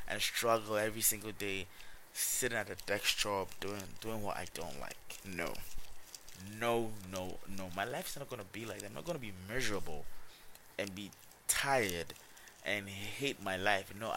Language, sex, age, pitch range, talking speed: English, male, 20-39, 85-105 Hz, 180 wpm